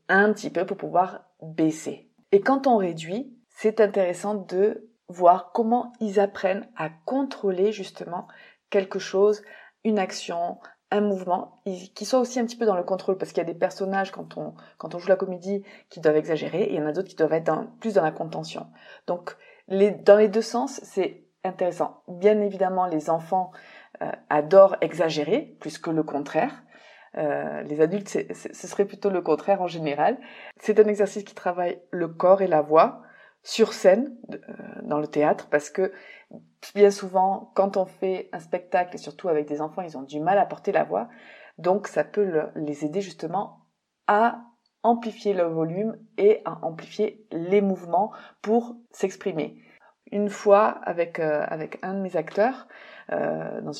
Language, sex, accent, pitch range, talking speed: French, female, French, 175-215 Hz, 180 wpm